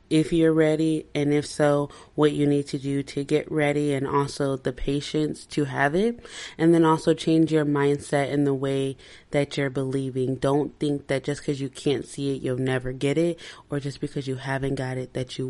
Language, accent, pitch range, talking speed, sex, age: English, American, 140-160 Hz, 215 wpm, female, 20-39